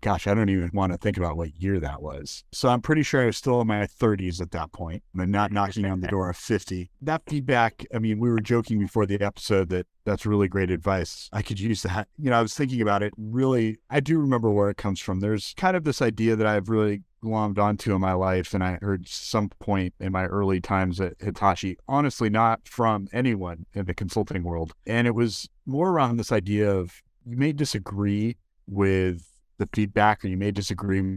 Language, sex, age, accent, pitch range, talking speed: English, male, 40-59, American, 95-115 Hz, 225 wpm